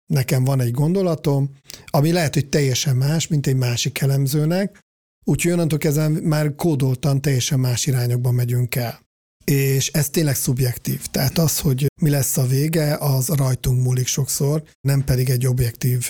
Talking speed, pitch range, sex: 155 wpm, 130-155 Hz, male